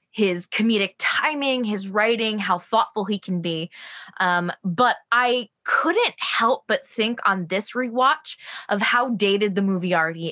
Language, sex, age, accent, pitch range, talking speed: English, female, 20-39, American, 180-230 Hz, 150 wpm